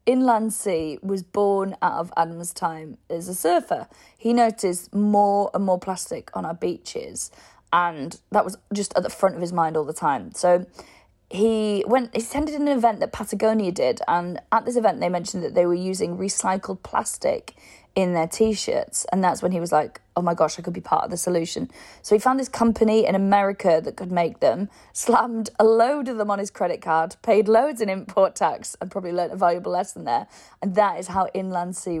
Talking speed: 210 wpm